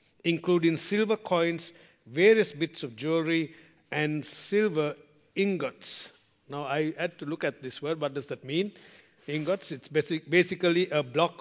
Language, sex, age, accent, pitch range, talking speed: English, male, 50-69, Indian, 140-185 Hz, 145 wpm